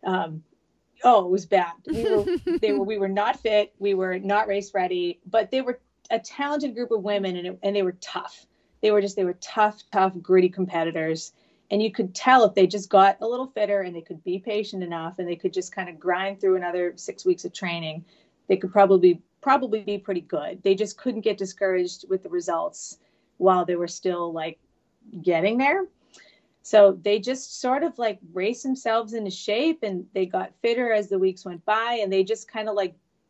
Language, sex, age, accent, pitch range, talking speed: English, female, 30-49, American, 180-225 Hz, 215 wpm